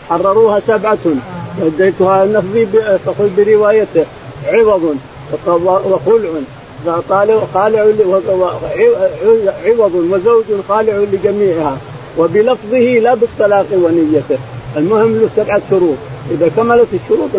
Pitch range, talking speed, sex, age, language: 160-215 Hz, 95 wpm, male, 50-69, Arabic